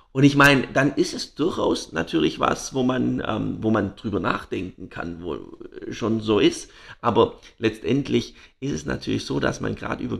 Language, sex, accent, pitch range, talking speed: German, male, German, 105-120 Hz, 180 wpm